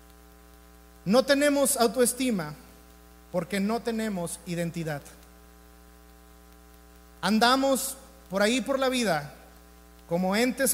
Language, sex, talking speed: Spanish, male, 85 wpm